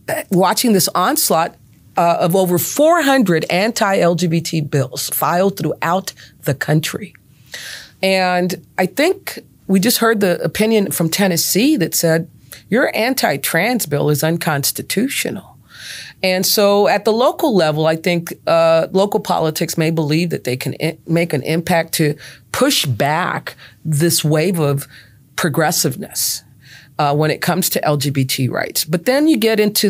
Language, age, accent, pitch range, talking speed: English, 40-59, American, 150-195 Hz, 135 wpm